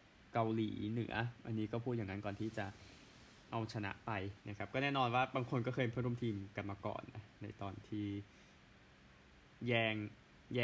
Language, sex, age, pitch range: Thai, male, 20-39, 100-120 Hz